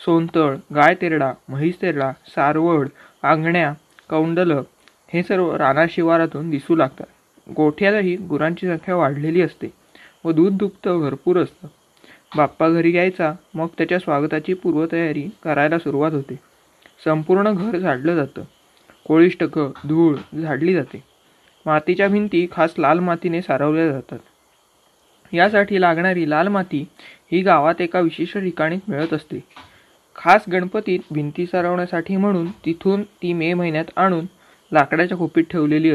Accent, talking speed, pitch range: native, 120 wpm, 155-180 Hz